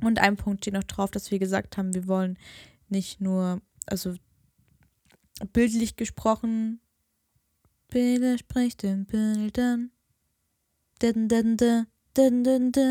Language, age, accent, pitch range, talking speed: German, 10-29, German, 200-235 Hz, 100 wpm